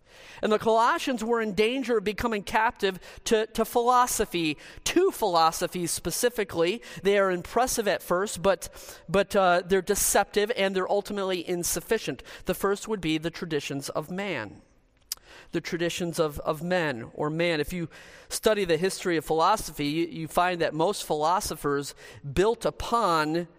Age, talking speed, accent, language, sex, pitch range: 40-59, 150 wpm, American, English, male, 165-215 Hz